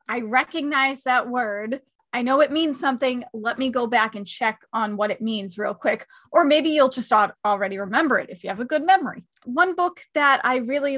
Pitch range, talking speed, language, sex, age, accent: 215-265 Hz, 215 wpm, English, female, 30-49, American